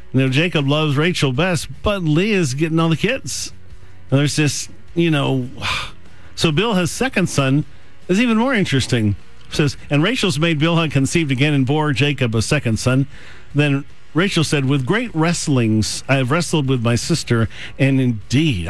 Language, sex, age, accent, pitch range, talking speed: English, male, 50-69, American, 125-165 Hz, 180 wpm